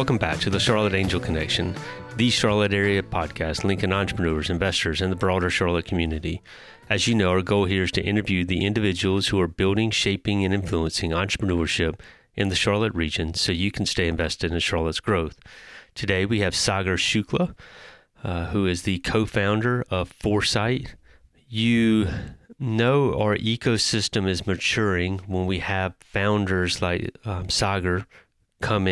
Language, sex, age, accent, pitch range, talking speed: English, male, 30-49, American, 90-105 Hz, 155 wpm